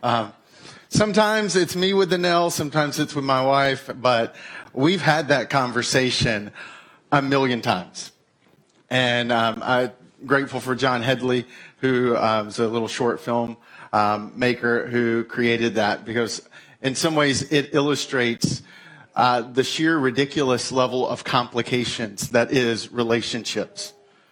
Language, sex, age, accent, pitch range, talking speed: English, male, 40-59, American, 125-170 Hz, 135 wpm